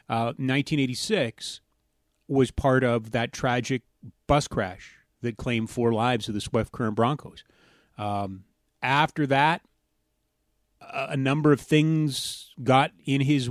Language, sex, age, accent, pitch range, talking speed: English, male, 30-49, American, 120-150 Hz, 130 wpm